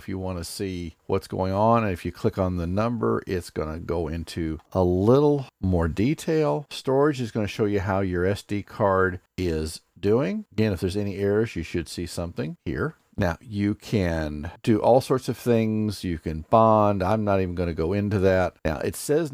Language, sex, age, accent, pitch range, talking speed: English, male, 50-69, American, 90-120 Hz, 210 wpm